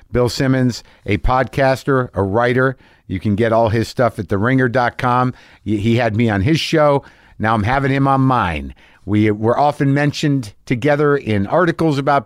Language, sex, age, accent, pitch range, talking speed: English, male, 50-69, American, 120-165 Hz, 165 wpm